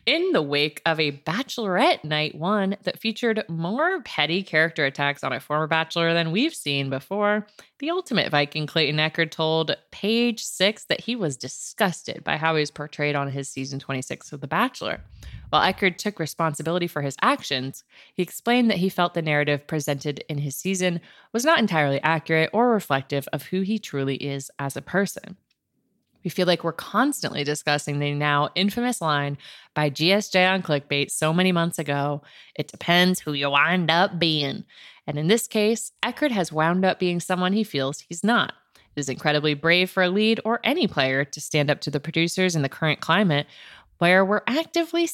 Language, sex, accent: English, female, American